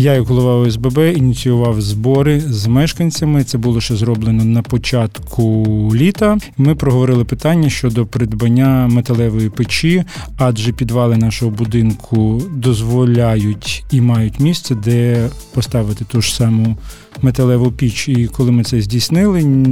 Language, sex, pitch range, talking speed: Ukrainian, male, 115-135 Hz, 130 wpm